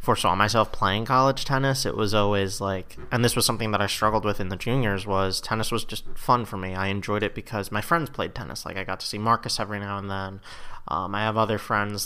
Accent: American